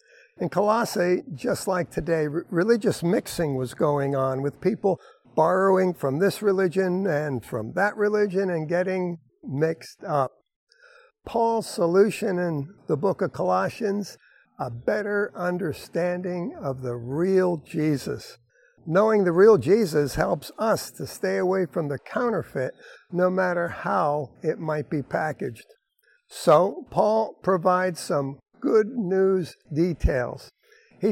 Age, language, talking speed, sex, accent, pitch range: 60-79, English, 125 wpm, male, American, 155-200 Hz